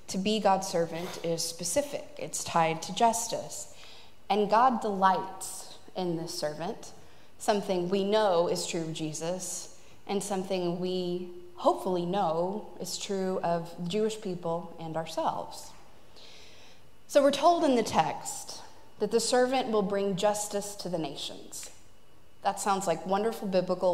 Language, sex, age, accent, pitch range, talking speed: English, female, 20-39, American, 170-220 Hz, 140 wpm